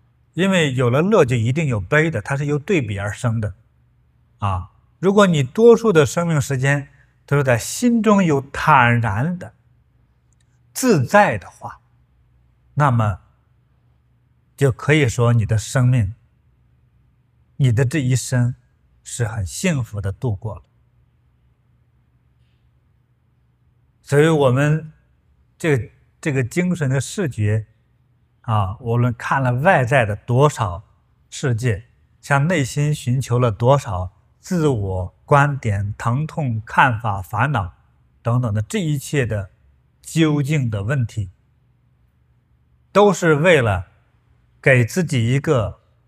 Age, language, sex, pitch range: 50-69, Chinese, male, 110-145 Hz